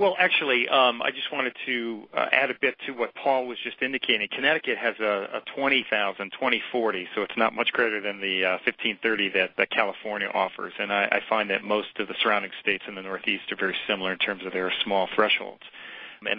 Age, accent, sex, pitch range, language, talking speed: 40-59, American, male, 100-110 Hz, English, 215 wpm